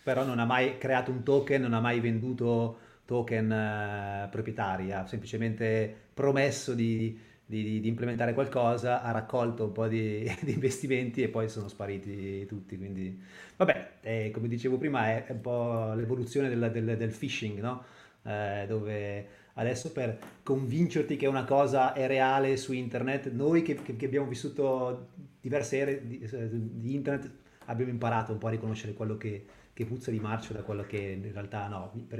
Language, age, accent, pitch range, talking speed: Italian, 30-49, native, 110-135 Hz, 160 wpm